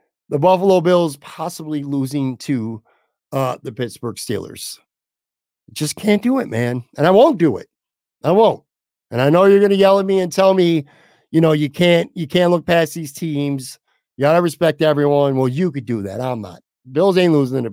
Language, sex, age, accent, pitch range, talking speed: English, male, 50-69, American, 140-185 Hz, 205 wpm